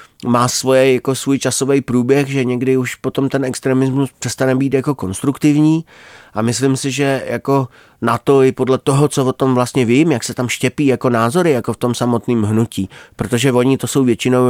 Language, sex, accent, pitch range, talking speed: Czech, male, native, 115-135 Hz, 195 wpm